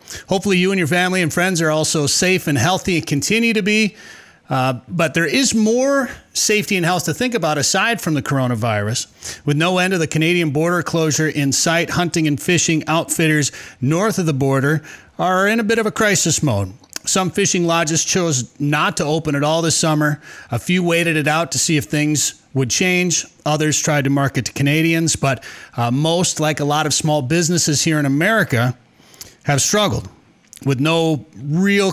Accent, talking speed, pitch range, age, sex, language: American, 190 wpm, 140-175 Hz, 30-49, male, English